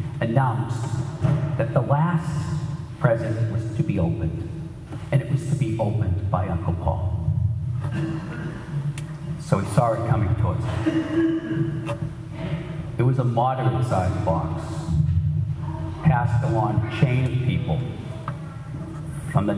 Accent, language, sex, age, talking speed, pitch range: American, English, male, 50-69, 120 wpm, 110-145 Hz